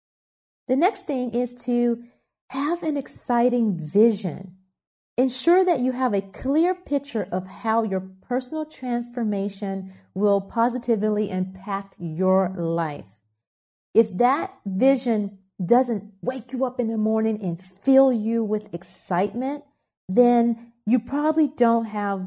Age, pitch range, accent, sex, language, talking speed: 40-59, 185-245 Hz, American, female, English, 125 wpm